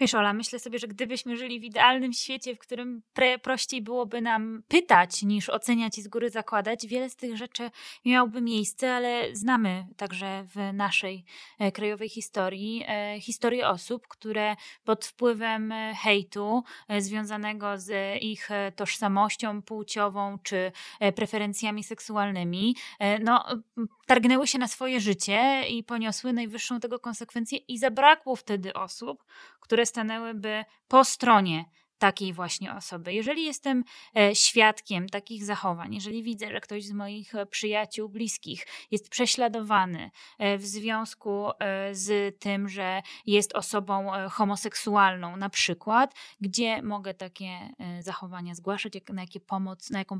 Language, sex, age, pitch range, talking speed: Polish, female, 20-39, 200-235 Hz, 125 wpm